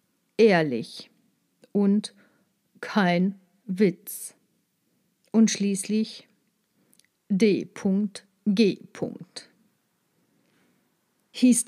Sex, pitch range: female, 200-260 Hz